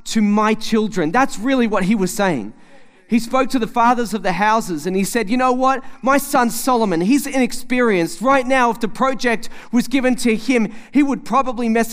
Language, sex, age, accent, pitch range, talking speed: English, male, 30-49, Australian, 225-270 Hz, 205 wpm